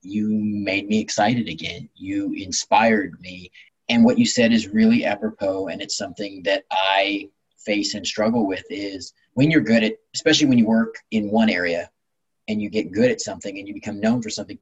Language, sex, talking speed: English, male, 195 wpm